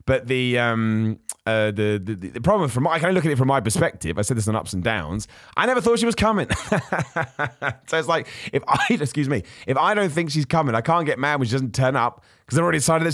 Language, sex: English, male